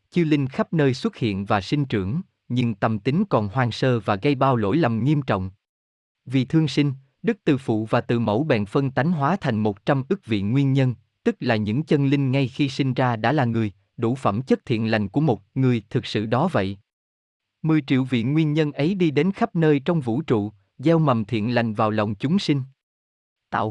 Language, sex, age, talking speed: Vietnamese, male, 20-39, 225 wpm